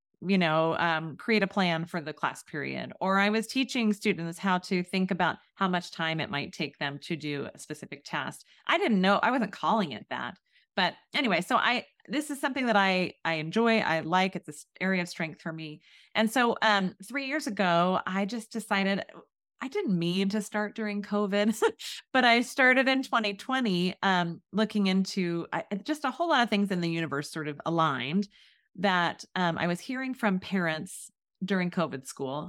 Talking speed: 195 wpm